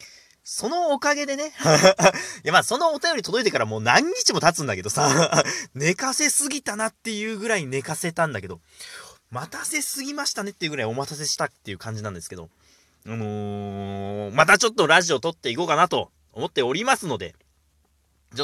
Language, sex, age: Japanese, male, 30-49